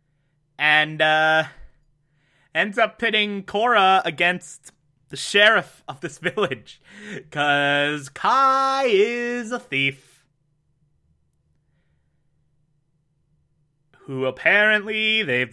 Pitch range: 135-160 Hz